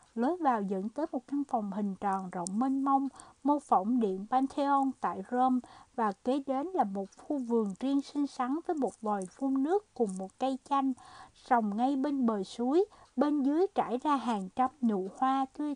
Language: Vietnamese